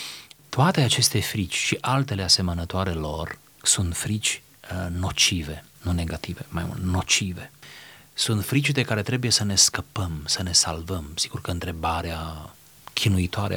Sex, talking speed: male, 135 wpm